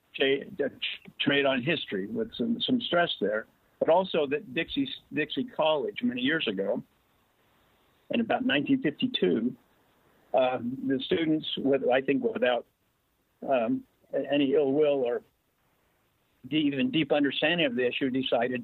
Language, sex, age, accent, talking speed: English, male, 50-69, American, 130 wpm